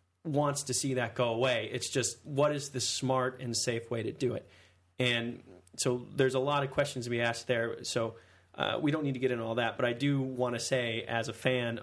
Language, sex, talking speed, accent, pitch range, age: English, male, 245 wpm, American, 115-135 Hz, 30-49